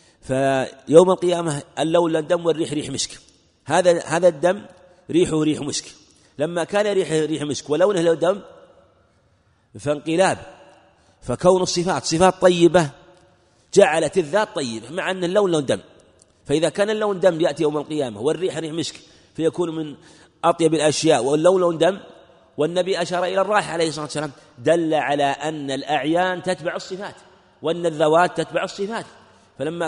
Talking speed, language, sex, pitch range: 140 wpm, Arabic, male, 140-175 Hz